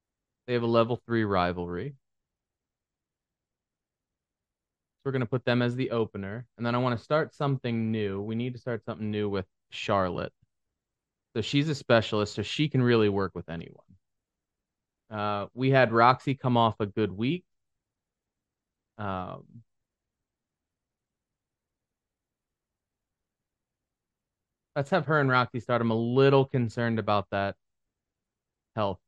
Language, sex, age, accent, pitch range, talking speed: English, male, 30-49, American, 95-120 Hz, 135 wpm